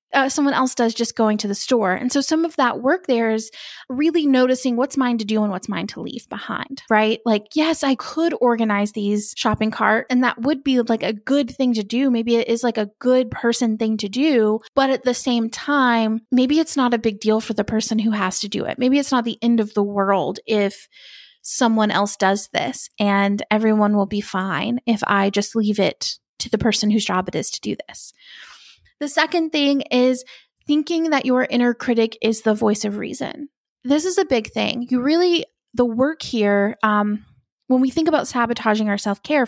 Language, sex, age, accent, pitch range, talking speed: English, female, 20-39, American, 215-270 Hz, 215 wpm